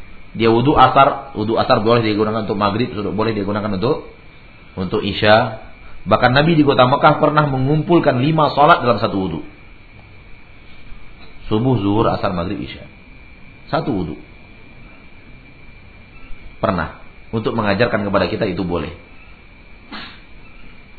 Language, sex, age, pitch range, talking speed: Malay, male, 40-59, 100-130 Hz, 115 wpm